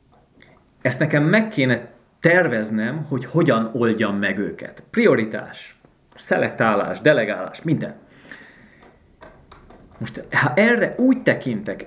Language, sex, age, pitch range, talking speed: Hungarian, male, 30-49, 110-145 Hz, 95 wpm